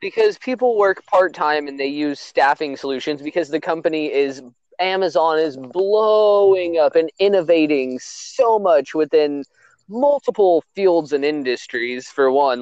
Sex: male